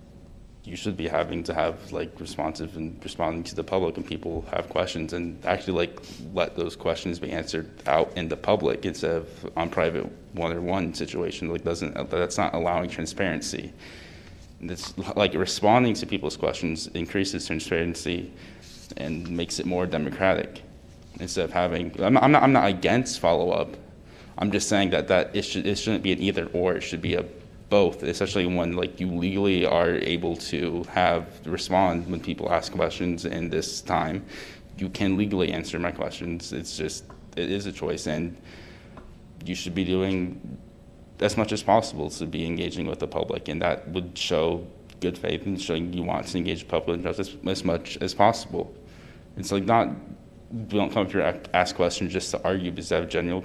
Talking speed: 185 wpm